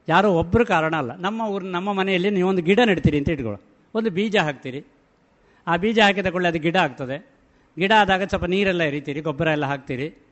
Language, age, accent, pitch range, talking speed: Kannada, 60-79, native, 140-205 Hz, 180 wpm